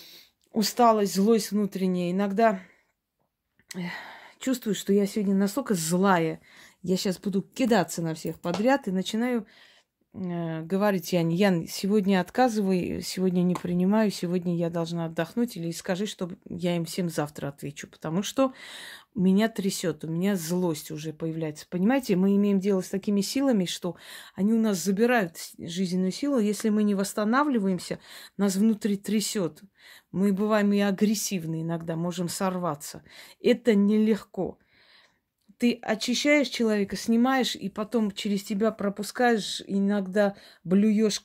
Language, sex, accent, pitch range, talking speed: Russian, female, native, 180-215 Hz, 130 wpm